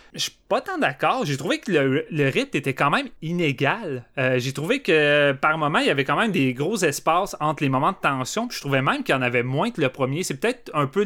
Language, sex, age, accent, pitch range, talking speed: French, male, 30-49, Canadian, 135-165 Hz, 265 wpm